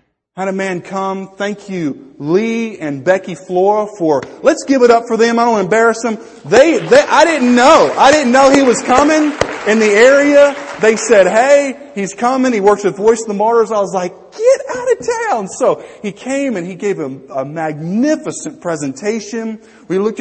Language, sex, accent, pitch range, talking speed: English, male, American, 170-245 Hz, 195 wpm